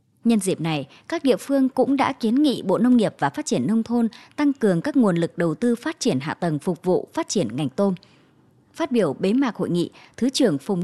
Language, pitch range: Vietnamese, 190-260 Hz